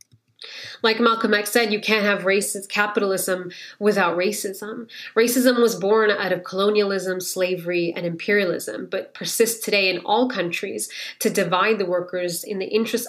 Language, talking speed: Swedish, 150 wpm